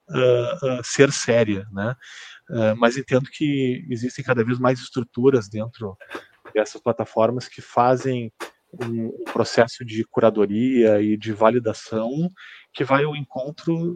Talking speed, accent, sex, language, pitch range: 130 wpm, Brazilian, male, Portuguese, 110-130 Hz